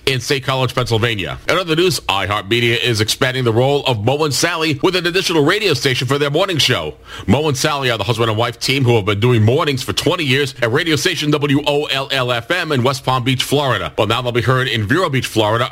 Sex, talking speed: male, 230 wpm